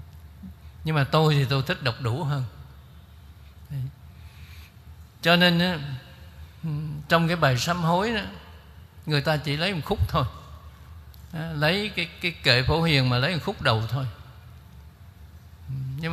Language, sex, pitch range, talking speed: Vietnamese, male, 105-145 Hz, 140 wpm